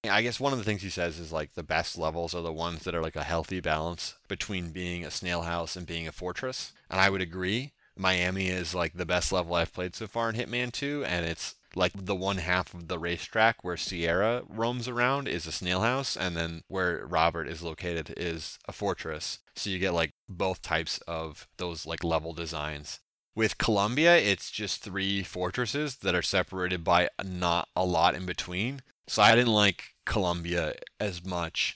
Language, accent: English, American